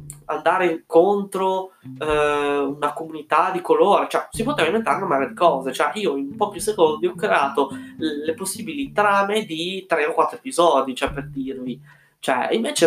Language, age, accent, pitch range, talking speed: Italian, 20-39, native, 140-175 Hz, 160 wpm